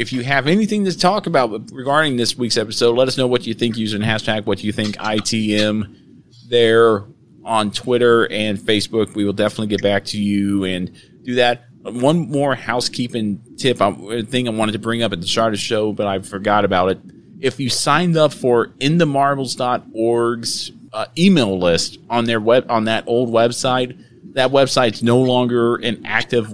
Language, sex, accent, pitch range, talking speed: English, male, American, 110-125 Hz, 185 wpm